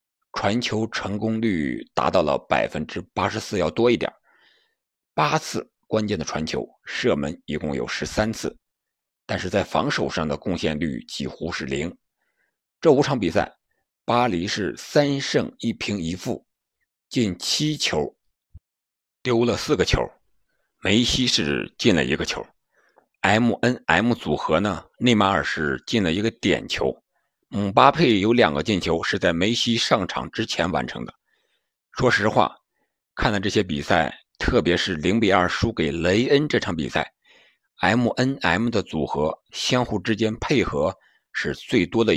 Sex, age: male, 60-79